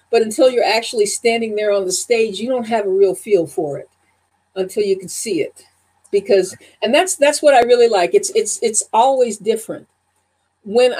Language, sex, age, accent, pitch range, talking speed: English, female, 50-69, American, 190-250 Hz, 195 wpm